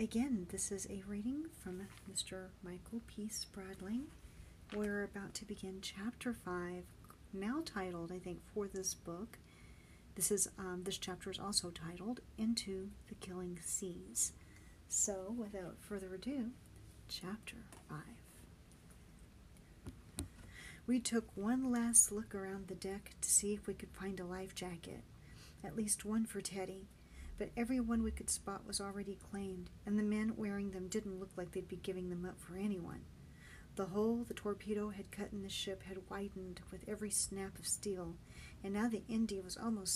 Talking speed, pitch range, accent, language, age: 160 wpm, 190-220 Hz, American, English, 40-59